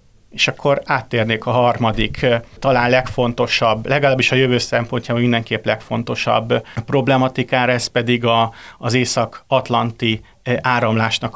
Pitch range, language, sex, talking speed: 110-125 Hz, Hungarian, male, 105 wpm